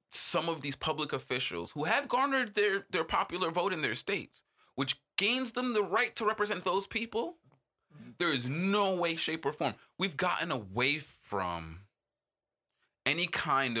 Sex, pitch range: male, 145-230 Hz